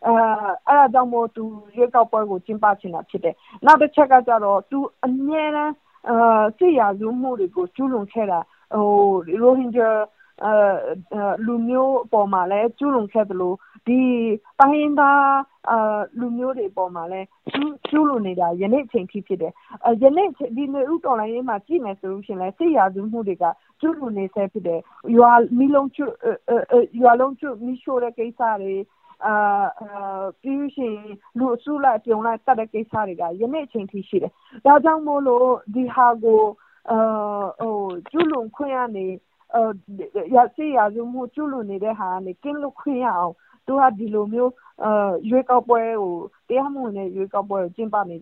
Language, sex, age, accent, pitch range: English, female, 50-69, Indian, 205-265 Hz